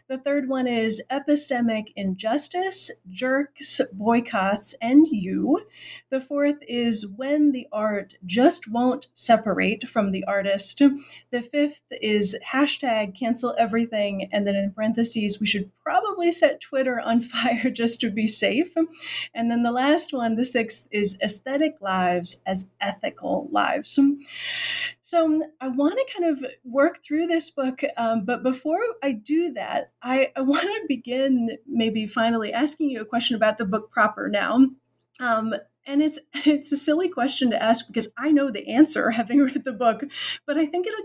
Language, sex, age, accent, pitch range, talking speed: English, female, 30-49, American, 225-295 Hz, 160 wpm